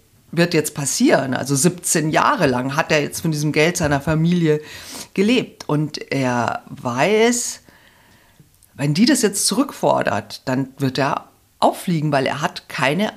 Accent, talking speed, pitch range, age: German, 145 wpm, 130-175 Hz, 50-69